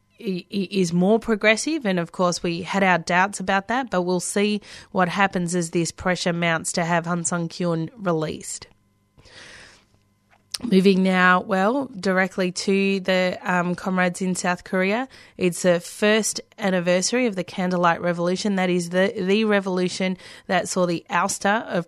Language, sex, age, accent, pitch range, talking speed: English, female, 30-49, Australian, 170-195 Hz, 150 wpm